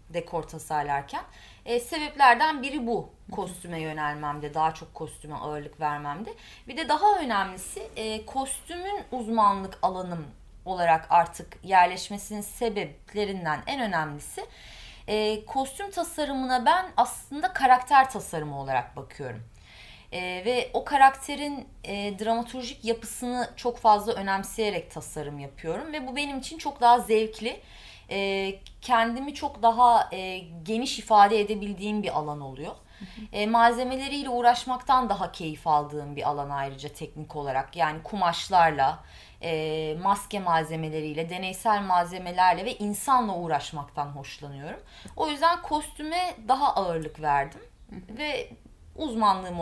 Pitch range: 160-245 Hz